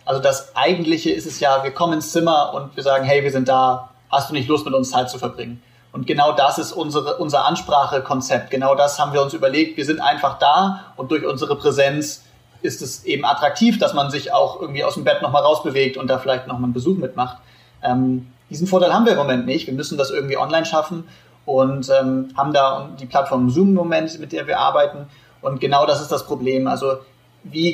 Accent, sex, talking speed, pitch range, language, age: German, male, 220 wpm, 130-165 Hz, German, 30-49